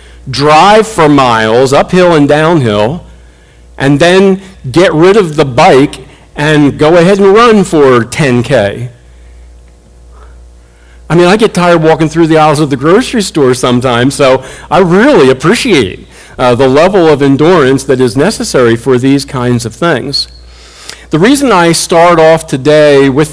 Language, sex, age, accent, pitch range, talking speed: English, male, 40-59, American, 125-165 Hz, 150 wpm